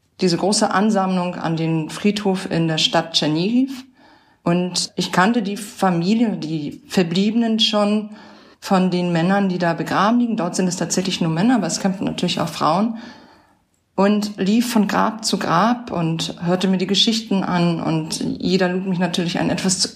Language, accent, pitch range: German, German, 180-220 Hz